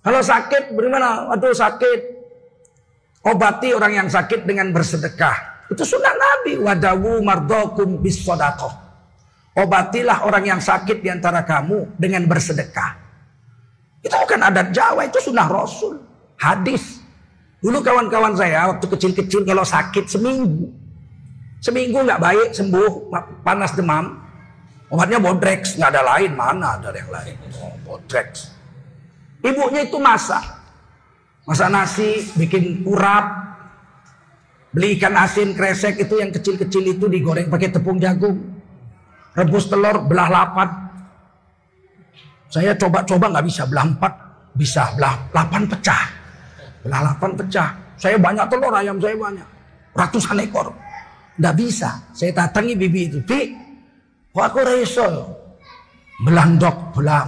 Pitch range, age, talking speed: 160-210 Hz, 40-59, 115 wpm